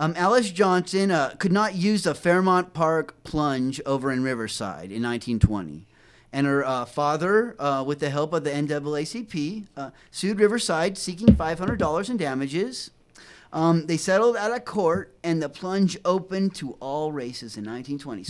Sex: male